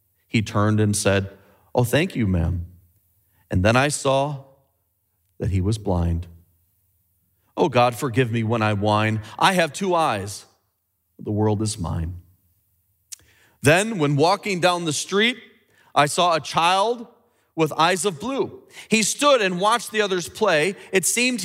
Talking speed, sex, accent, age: 150 wpm, male, American, 40-59